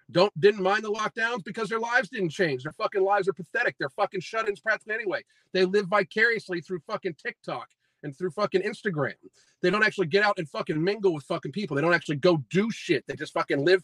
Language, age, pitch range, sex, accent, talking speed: English, 40-59, 175-215 Hz, male, American, 220 wpm